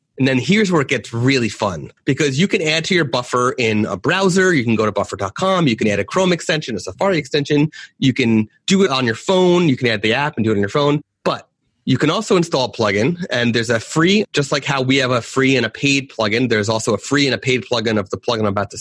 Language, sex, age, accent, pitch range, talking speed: English, male, 30-49, American, 115-155 Hz, 275 wpm